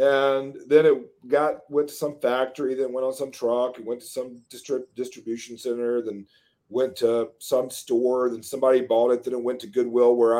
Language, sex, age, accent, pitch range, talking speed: English, male, 40-59, American, 115-190 Hz, 195 wpm